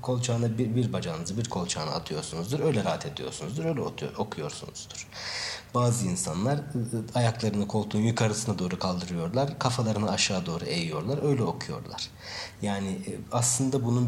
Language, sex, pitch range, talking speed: Turkish, male, 105-130 Hz, 120 wpm